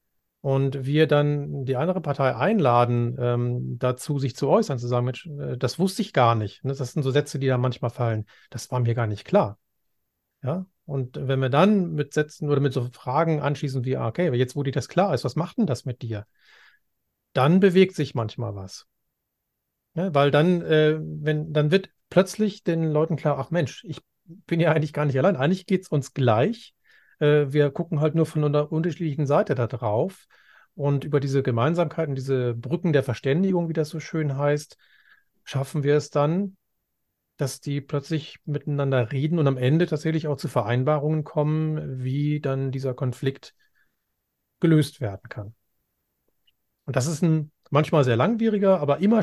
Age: 40-59